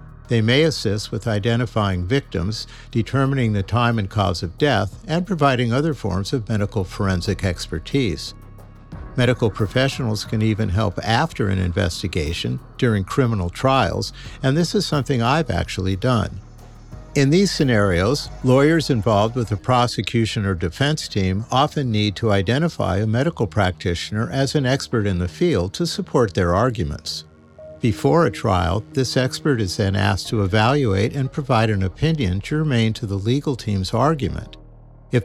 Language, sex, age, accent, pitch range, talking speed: English, male, 50-69, American, 100-135 Hz, 150 wpm